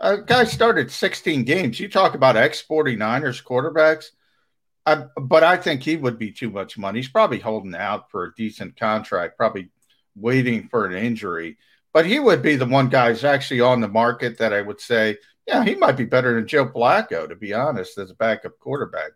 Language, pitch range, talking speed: English, 110-140 Hz, 205 wpm